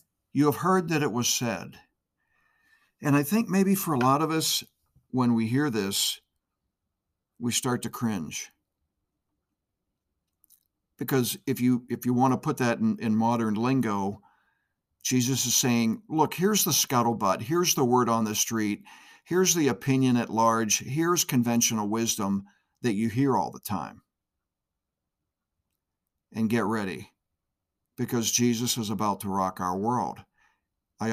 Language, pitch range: English, 95-130 Hz